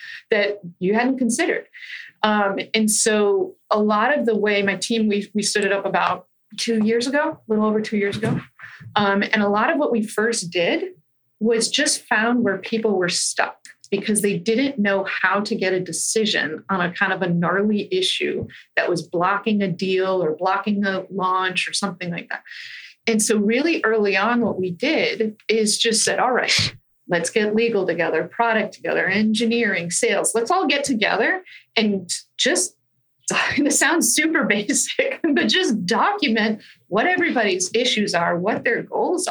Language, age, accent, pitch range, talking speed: English, 30-49, American, 190-240 Hz, 175 wpm